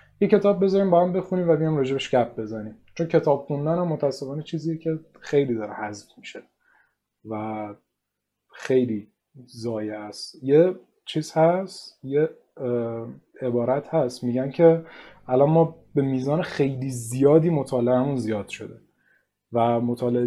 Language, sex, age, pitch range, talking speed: Persian, male, 30-49, 120-155 Hz, 135 wpm